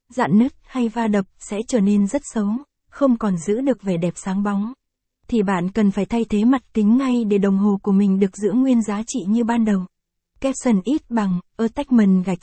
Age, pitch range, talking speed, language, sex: 20-39, 200-240 Hz, 215 wpm, Vietnamese, female